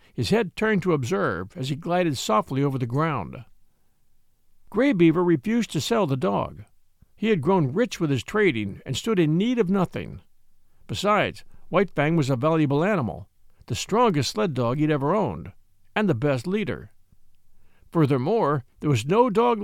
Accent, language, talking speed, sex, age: American, English, 170 wpm, male, 60-79